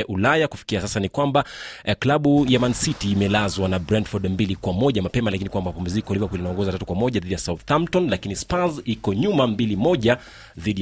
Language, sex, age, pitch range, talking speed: Swahili, male, 30-49, 95-120 Hz, 175 wpm